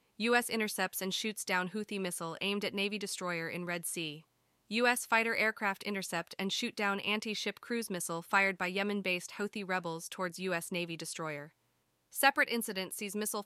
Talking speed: 165 wpm